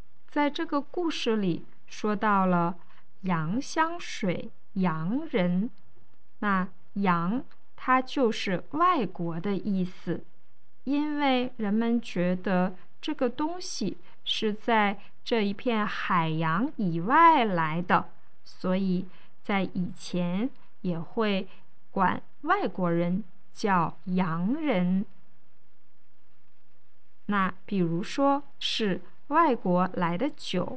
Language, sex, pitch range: Chinese, female, 180-245 Hz